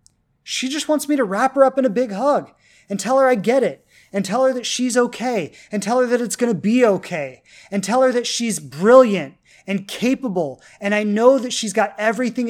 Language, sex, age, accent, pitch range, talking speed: English, male, 30-49, American, 155-240 Hz, 225 wpm